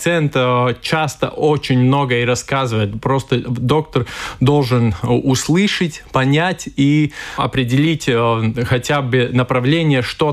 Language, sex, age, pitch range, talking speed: Russian, male, 20-39, 125-150 Hz, 95 wpm